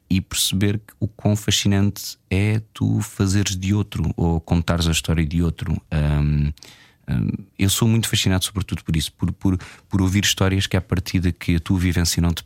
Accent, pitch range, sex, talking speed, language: Portuguese, 80-100 Hz, male, 180 wpm, Portuguese